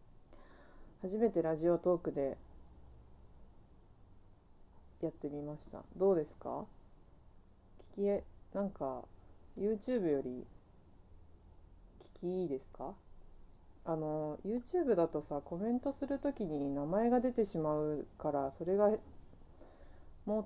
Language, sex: Japanese, female